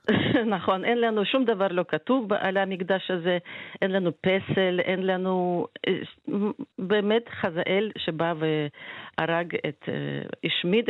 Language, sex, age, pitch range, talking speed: Hebrew, female, 40-59, 165-220 Hz, 115 wpm